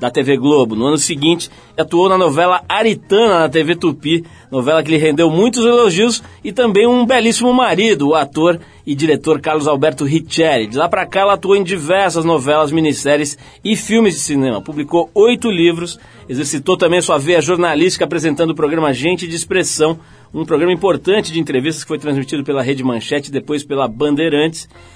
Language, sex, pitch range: Portuguese, male, 150-190 Hz